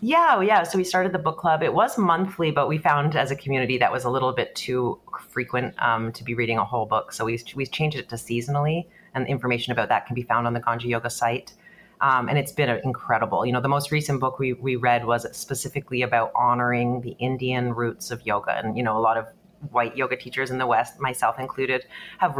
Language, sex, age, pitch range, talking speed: English, female, 30-49, 120-145 Hz, 235 wpm